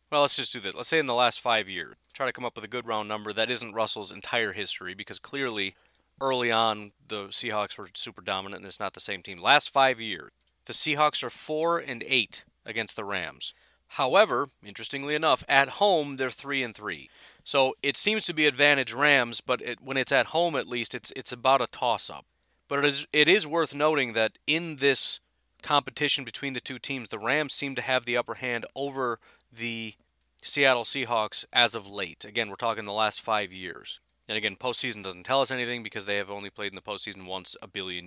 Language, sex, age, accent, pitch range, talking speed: English, male, 30-49, American, 110-140 Hz, 215 wpm